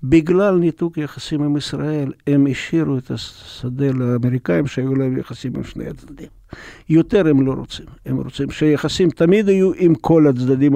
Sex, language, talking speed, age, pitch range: male, Hebrew, 155 wpm, 60-79, 120-155 Hz